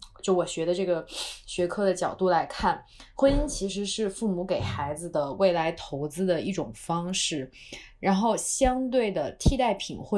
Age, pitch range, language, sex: 20-39, 155-205 Hz, Chinese, female